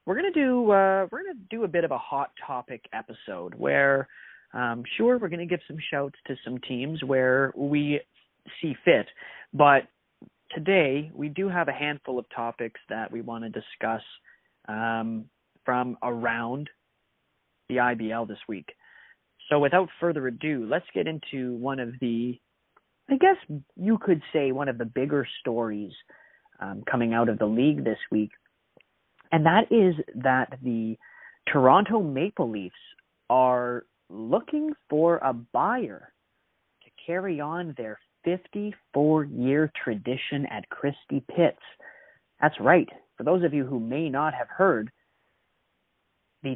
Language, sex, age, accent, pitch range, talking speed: English, male, 30-49, American, 120-170 Hz, 145 wpm